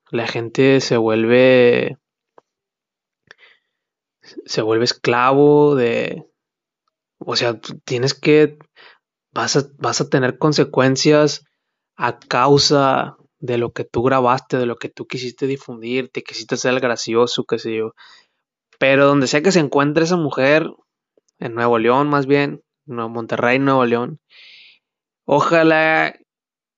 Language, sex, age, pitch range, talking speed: Spanish, male, 20-39, 120-145 Hz, 125 wpm